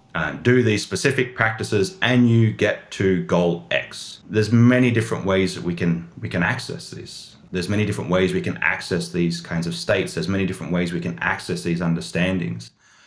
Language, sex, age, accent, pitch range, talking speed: English, male, 30-49, Australian, 90-115 Hz, 190 wpm